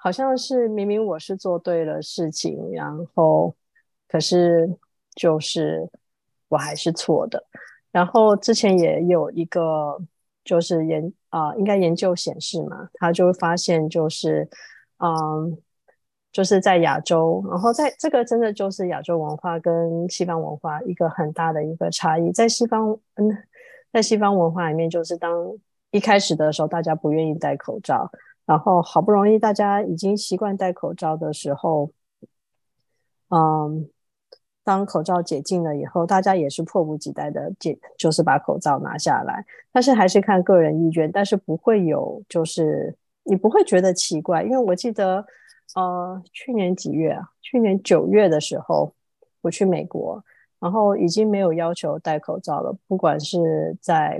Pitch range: 160-200 Hz